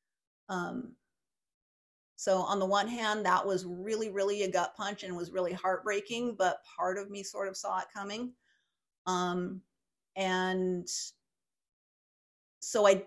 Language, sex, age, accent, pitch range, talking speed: English, female, 30-49, American, 180-195 Hz, 135 wpm